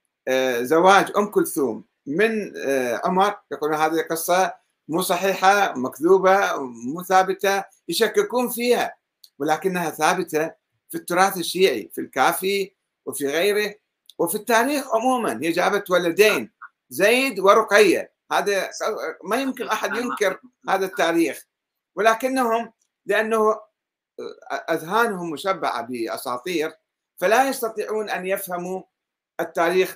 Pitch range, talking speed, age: 160-220 Hz, 100 wpm, 50-69